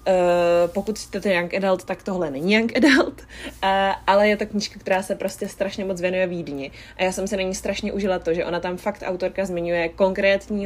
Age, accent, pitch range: 20-39, native, 175-200 Hz